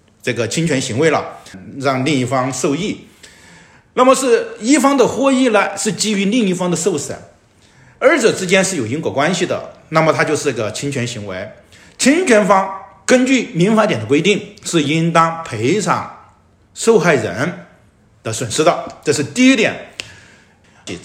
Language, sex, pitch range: Chinese, male, 150-235 Hz